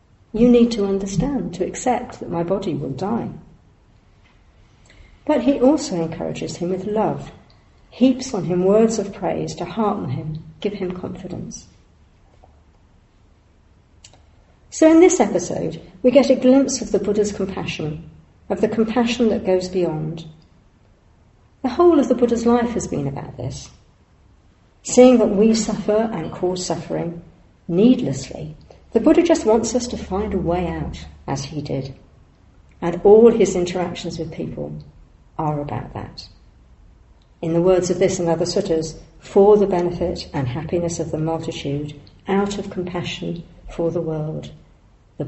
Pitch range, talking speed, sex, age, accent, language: 145-205 Hz, 145 wpm, female, 50-69, British, English